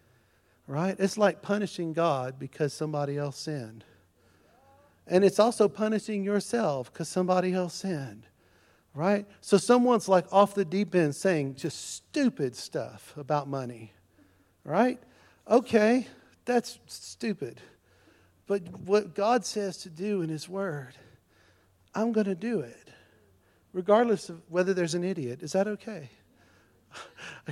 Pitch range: 135-200 Hz